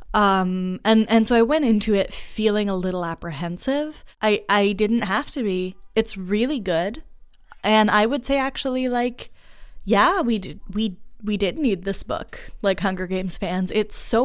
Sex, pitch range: female, 185-230 Hz